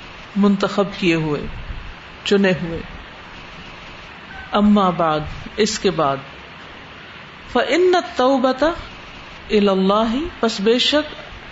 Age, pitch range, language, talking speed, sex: 50-69, 200-265 Hz, Urdu, 90 wpm, female